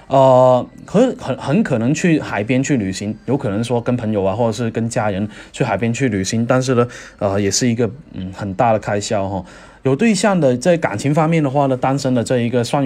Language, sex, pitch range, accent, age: Chinese, male, 110-140 Hz, native, 20-39